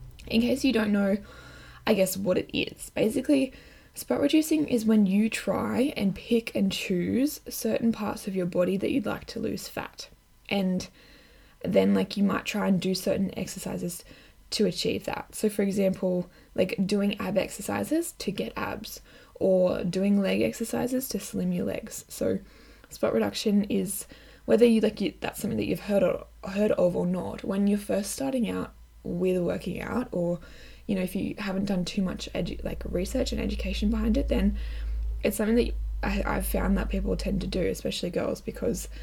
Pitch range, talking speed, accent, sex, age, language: 185-225 Hz, 180 wpm, Australian, female, 10-29, English